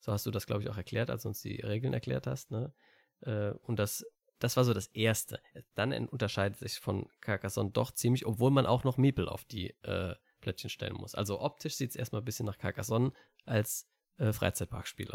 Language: German